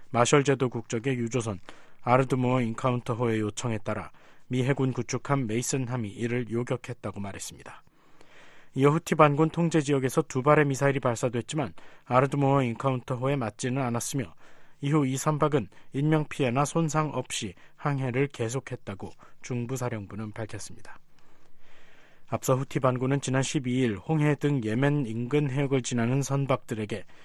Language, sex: Korean, male